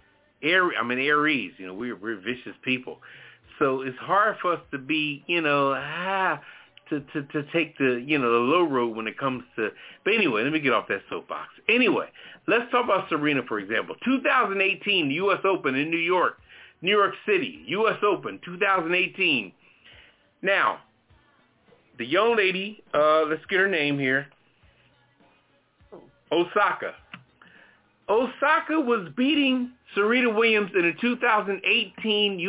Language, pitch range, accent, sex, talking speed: English, 150-220 Hz, American, male, 150 wpm